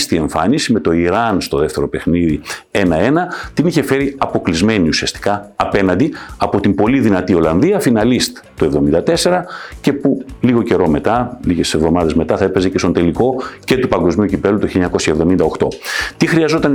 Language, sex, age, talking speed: Greek, male, 50-69, 160 wpm